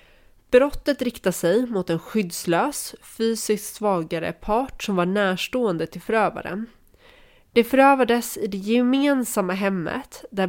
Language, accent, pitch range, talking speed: Swedish, native, 180-220 Hz, 120 wpm